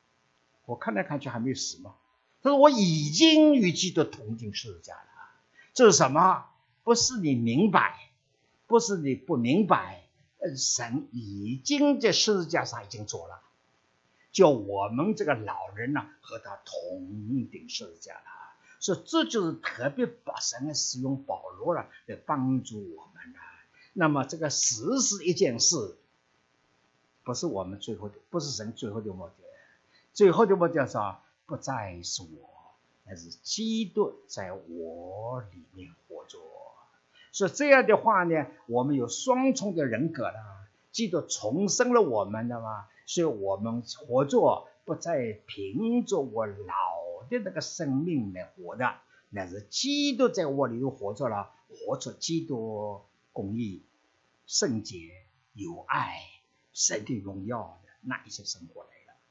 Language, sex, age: English, male, 50-69